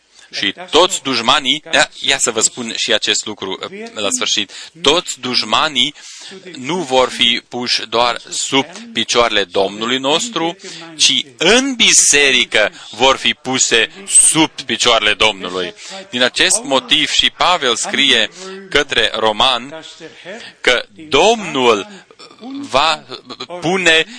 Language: Romanian